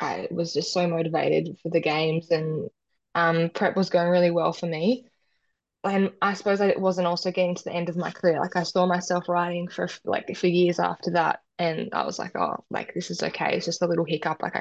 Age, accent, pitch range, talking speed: 20-39, Australian, 165-180 Hz, 240 wpm